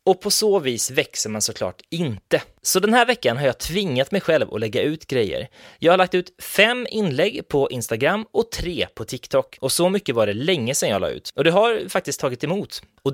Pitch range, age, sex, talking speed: 120-195 Hz, 20-39, male, 230 wpm